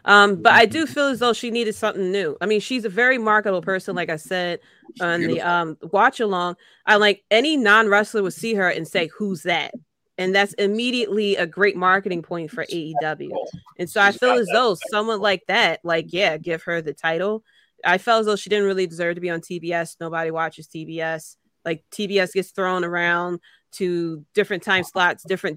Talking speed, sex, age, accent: 200 wpm, female, 20-39, American